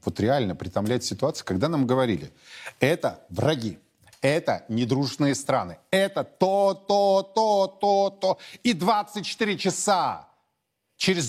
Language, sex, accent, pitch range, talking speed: Russian, male, native, 120-190 Hz, 115 wpm